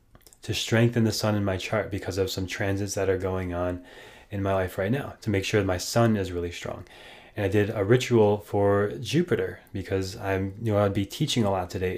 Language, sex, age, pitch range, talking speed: English, male, 20-39, 100-120 Hz, 230 wpm